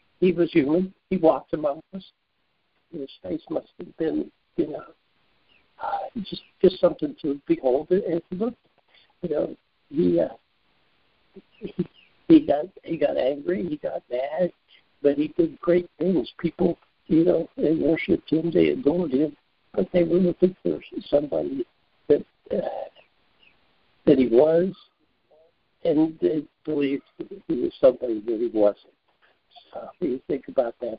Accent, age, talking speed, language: American, 60-79, 145 wpm, English